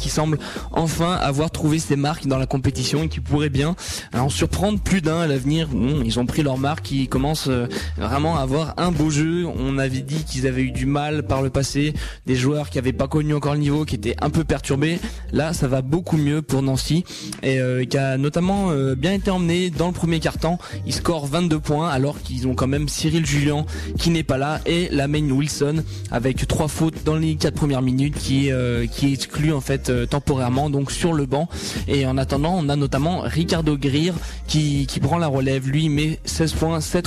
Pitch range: 130-155 Hz